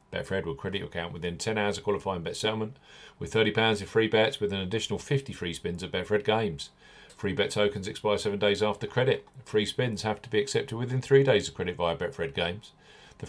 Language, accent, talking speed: English, British, 220 wpm